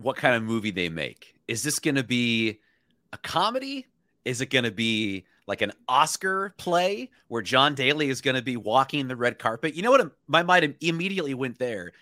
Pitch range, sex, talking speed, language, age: 110-140 Hz, male, 205 wpm, English, 30-49